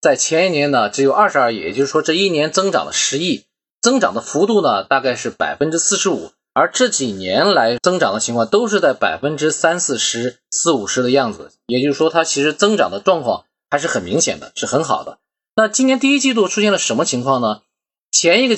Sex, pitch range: male, 135-200 Hz